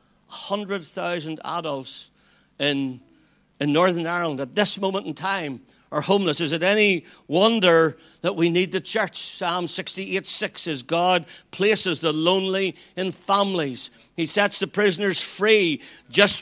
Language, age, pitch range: English, 60-79, 160-205 Hz